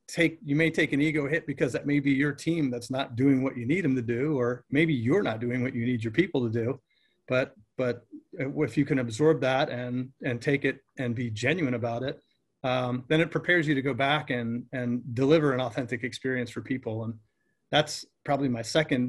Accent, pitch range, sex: American, 120-145 Hz, male